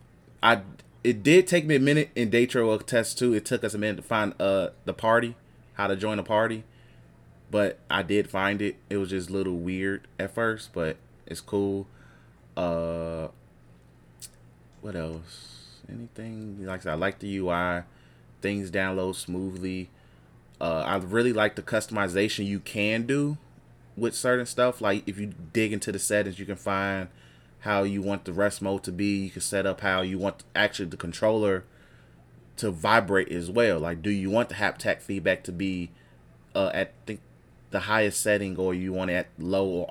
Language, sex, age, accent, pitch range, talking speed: English, male, 20-39, American, 80-105 Hz, 185 wpm